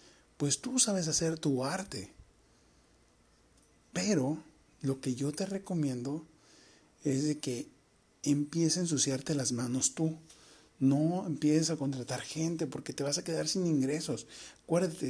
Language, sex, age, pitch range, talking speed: Spanish, male, 40-59, 140-180 Hz, 130 wpm